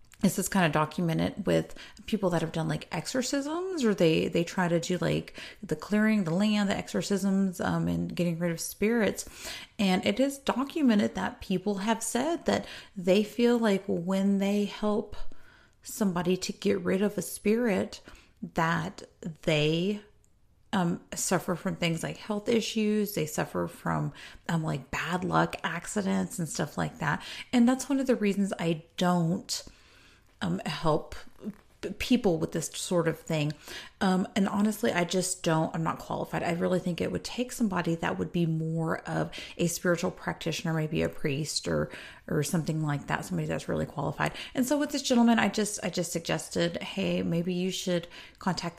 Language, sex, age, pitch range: English, female, 30-49, 165-210 Hz